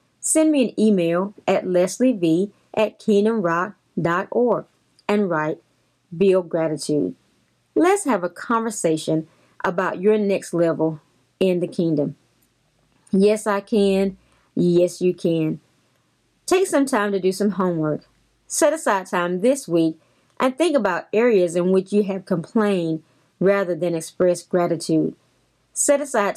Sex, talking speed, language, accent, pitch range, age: female, 125 wpm, English, American, 165-215 Hz, 30-49